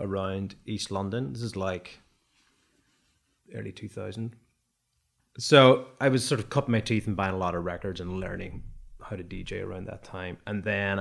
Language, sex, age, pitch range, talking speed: English, male, 20-39, 95-120 Hz, 175 wpm